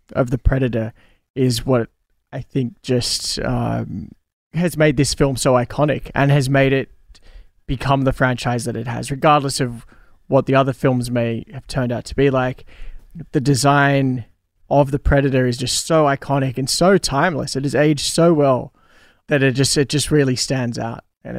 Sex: male